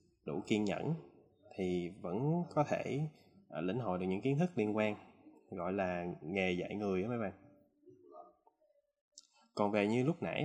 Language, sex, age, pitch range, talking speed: Vietnamese, male, 20-39, 95-125 Hz, 160 wpm